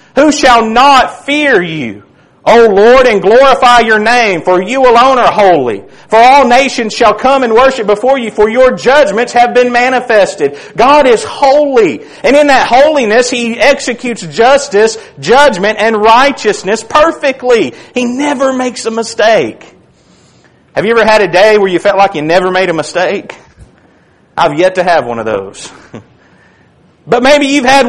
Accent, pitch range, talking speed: American, 190-265 Hz, 165 wpm